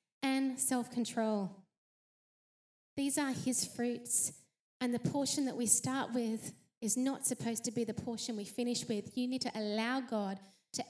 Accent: Australian